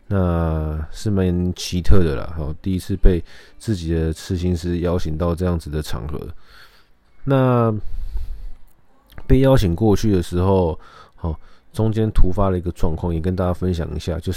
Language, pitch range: Chinese, 85-100 Hz